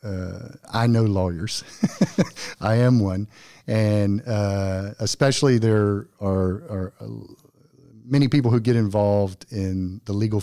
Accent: American